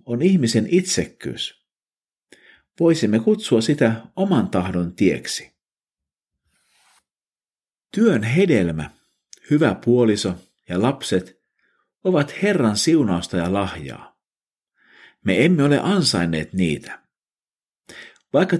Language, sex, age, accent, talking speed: Finnish, male, 50-69, native, 85 wpm